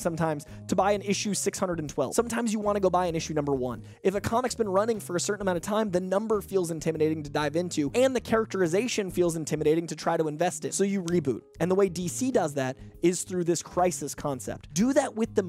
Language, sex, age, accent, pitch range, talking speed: English, male, 20-39, American, 165-225 Hz, 240 wpm